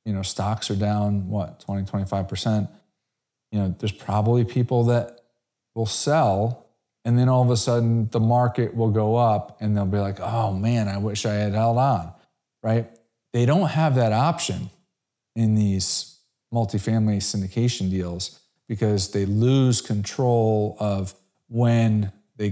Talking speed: 150 wpm